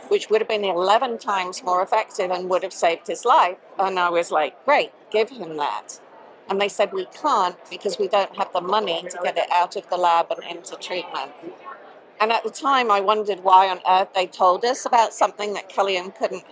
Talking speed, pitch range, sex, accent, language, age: 220 wpm, 180-215 Hz, female, British, English, 50-69